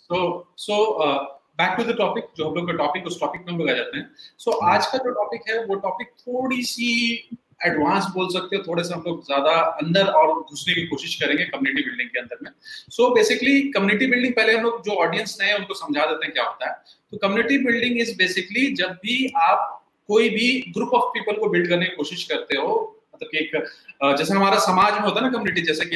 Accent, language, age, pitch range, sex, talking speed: native, Hindi, 30-49, 165-235 Hz, male, 210 wpm